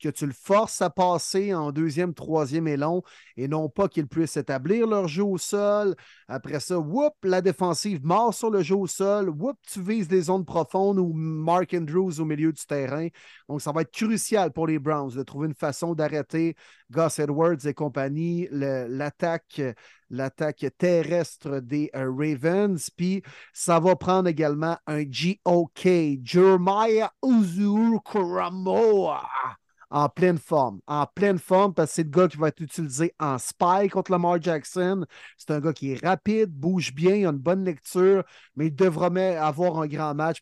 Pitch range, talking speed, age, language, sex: 150-195 Hz, 175 wpm, 30-49, French, male